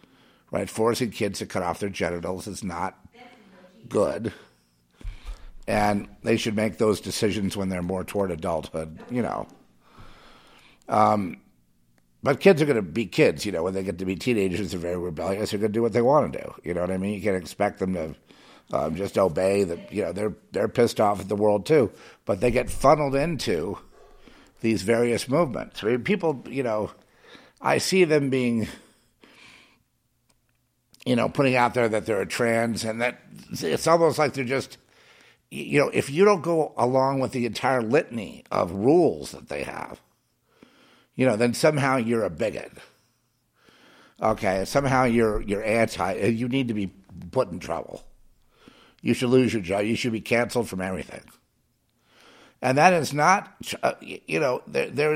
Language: English